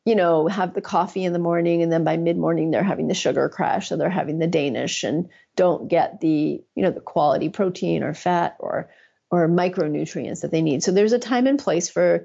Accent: American